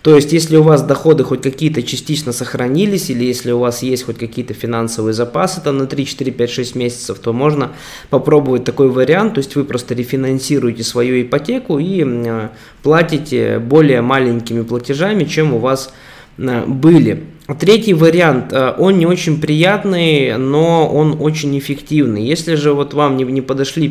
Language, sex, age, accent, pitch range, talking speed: Russian, male, 20-39, native, 125-150 Hz, 160 wpm